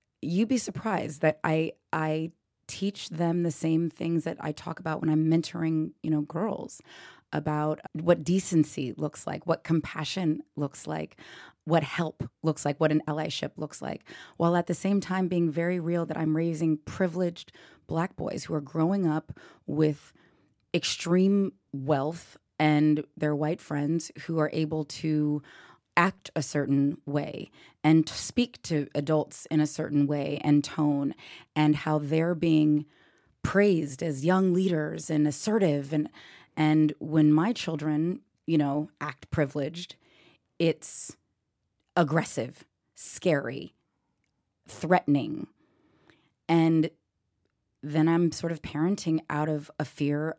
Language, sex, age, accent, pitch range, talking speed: English, female, 20-39, American, 150-165 Hz, 140 wpm